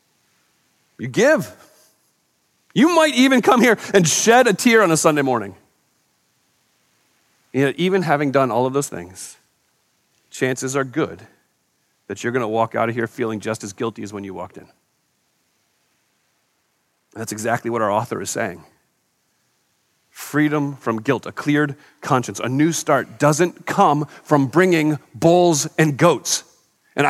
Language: English